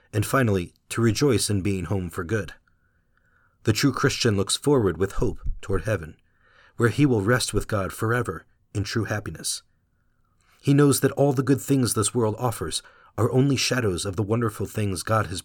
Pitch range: 95-115 Hz